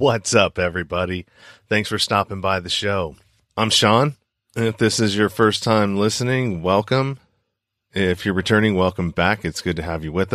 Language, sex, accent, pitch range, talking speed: English, male, American, 85-105 Hz, 180 wpm